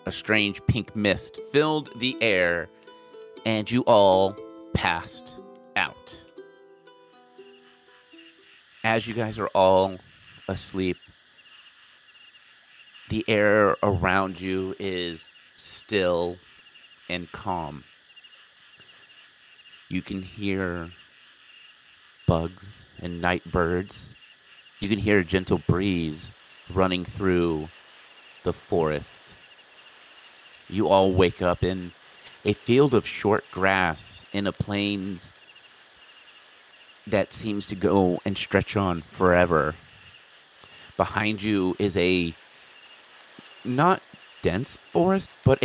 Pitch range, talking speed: 90-110 Hz, 95 wpm